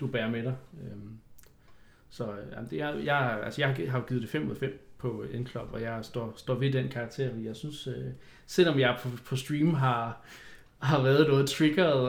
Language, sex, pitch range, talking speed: Danish, male, 120-145 Hz, 190 wpm